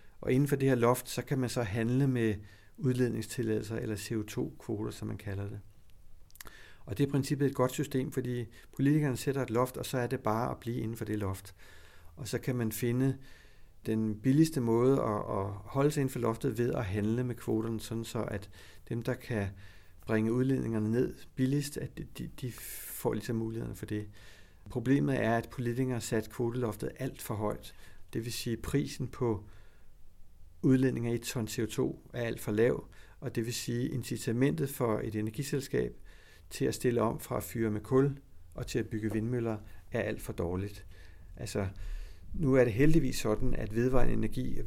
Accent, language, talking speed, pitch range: native, Danish, 185 wpm, 105-130 Hz